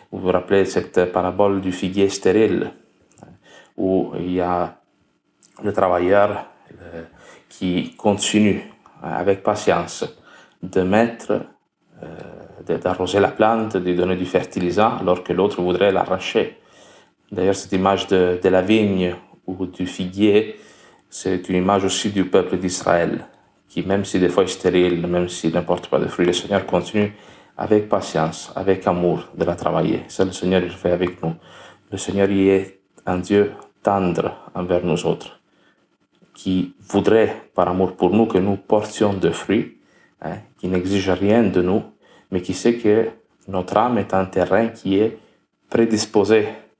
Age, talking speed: 30-49, 155 wpm